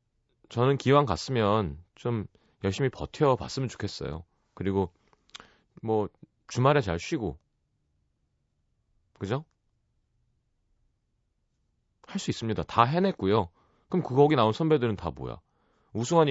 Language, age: Korean, 30-49